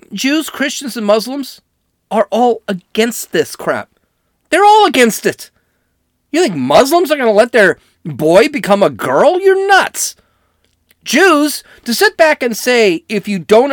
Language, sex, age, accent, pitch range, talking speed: English, male, 40-59, American, 160-245 Hz, 155 wpm